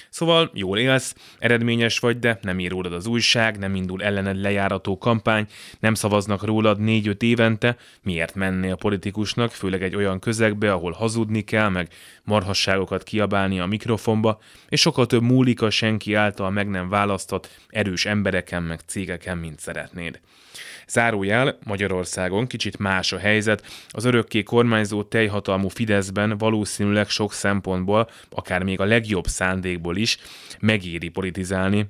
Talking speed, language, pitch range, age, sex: 135 wpm, Hungarian, 95-110 Hz, 20-39, male